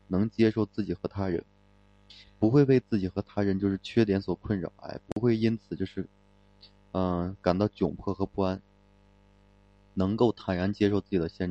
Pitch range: 95-105 Hz